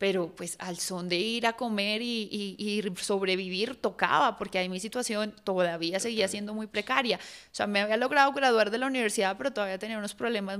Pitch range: 195-225 Hz